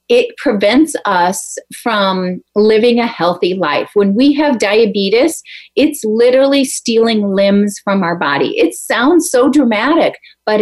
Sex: female